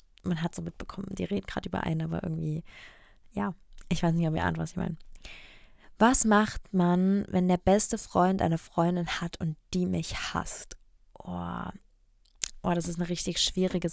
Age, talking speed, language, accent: 20-39, 180 wpm, German, German